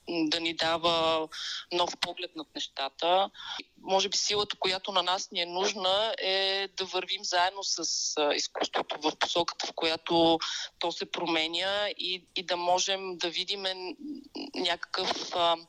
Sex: female